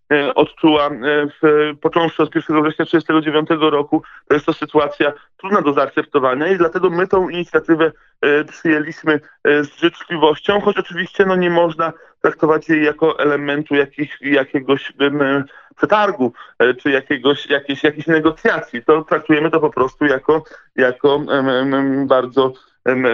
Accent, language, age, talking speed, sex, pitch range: native, Polish, 20-39, 130 wpm, male, 145-170 Hz